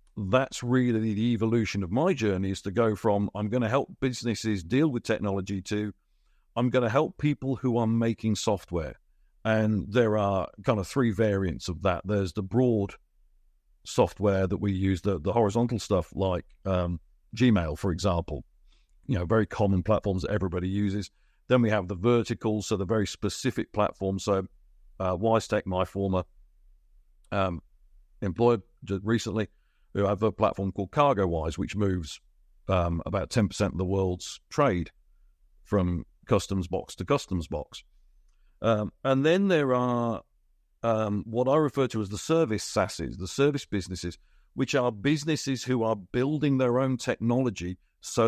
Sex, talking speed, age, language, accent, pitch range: male, 160 wpm, 50-69, English, British, 95-115 Hz